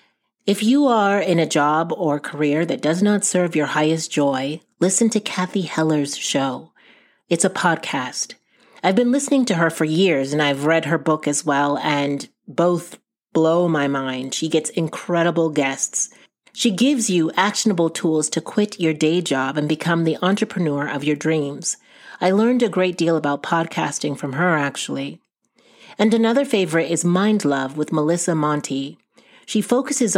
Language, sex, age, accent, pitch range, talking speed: English, female, 30-49, American, 150-200 Hz, 165 wpm